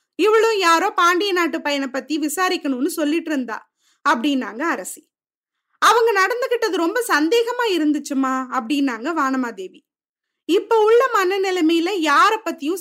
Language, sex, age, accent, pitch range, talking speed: Tamil, female, 20-39, native, 275-370 Hz, 110 wpm